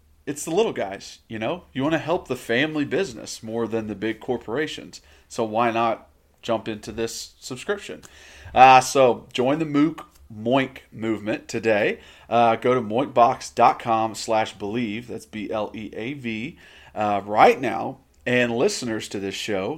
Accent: American